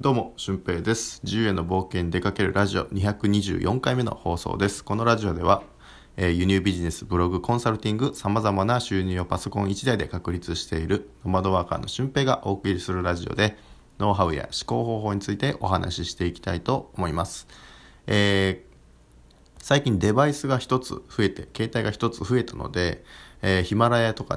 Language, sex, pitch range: Japanese, male, 90-115 Hz